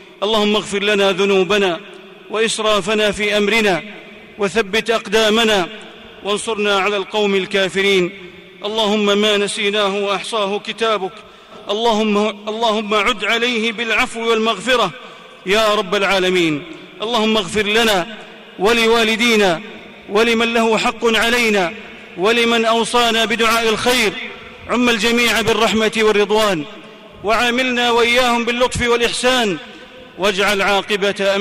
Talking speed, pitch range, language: 95 wpm, 180-220 Hz, Arabic